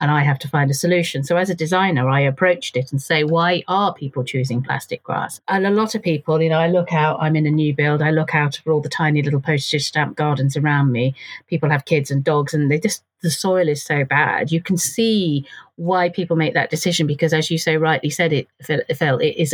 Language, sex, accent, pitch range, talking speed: English, female, British, 145-180 Hz, 250 wpm